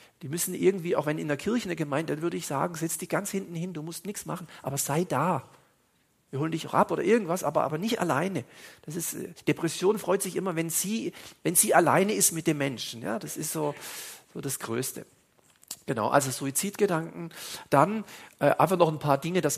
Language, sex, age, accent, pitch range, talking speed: German, male, 40-59, German, 150-185 Hz, 215 wpm